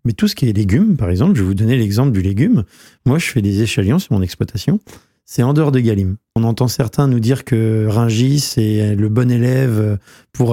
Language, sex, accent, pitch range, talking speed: French, male, French, 105-130 Hz, 230 wpm